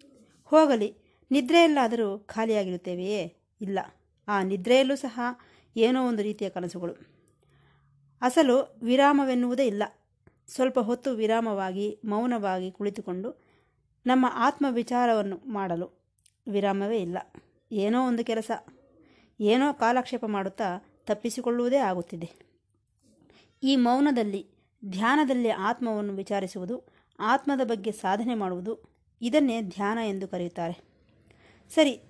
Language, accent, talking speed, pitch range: Kannada, native, 85 wpm, 195-250 Hz